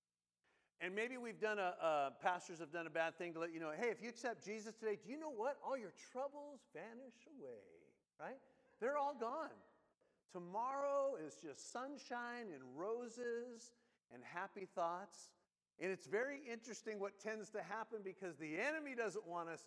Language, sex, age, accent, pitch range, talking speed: English, male, 50-69, American, 170-240 Hz, 175 wpm